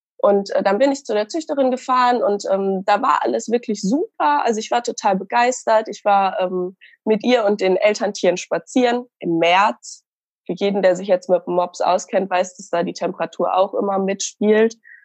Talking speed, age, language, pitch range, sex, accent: 185 wpm, 20-39, German, 185-225 Hz, female, German